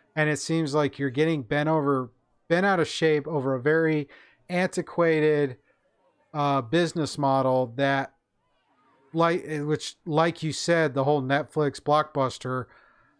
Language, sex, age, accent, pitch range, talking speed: English, male, 40-59, American, 145-175 Hz, 130 wpm